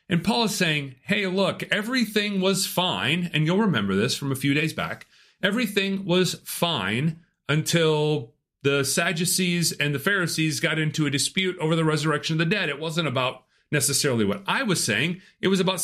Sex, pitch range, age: male, 140-185 Hz, 40-59